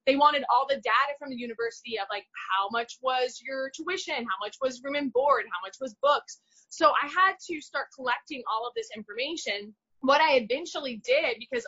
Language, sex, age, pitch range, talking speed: English, female, 20-39, 225-310 Hz, 205 wpm